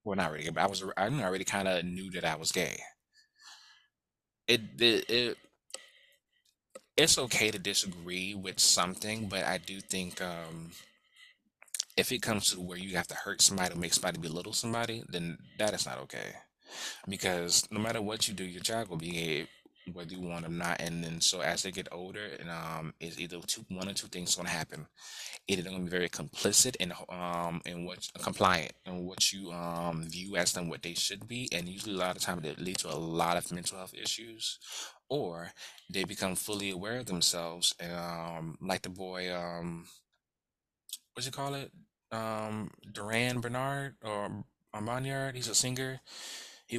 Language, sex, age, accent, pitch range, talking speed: English, male, 20-39, American, 85-110 Hz, 185 wpm